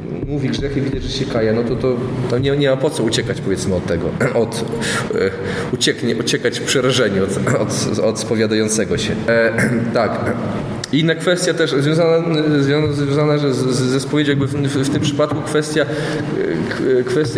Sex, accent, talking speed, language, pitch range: male, native, 170 wpm, Polish, 130-170 Hz